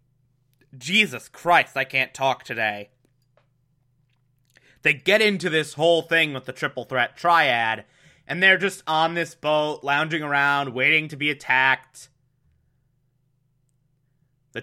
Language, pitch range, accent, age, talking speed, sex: English, 130-170 Hz, American, 30-49, 125 wpm, male